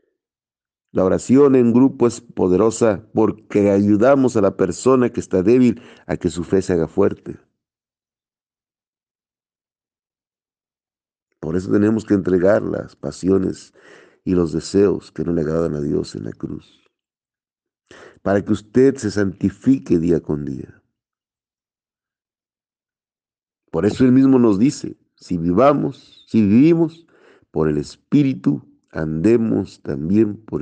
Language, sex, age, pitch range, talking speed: Spanish, male, 50-69, 90-125 Hz, 125 wpm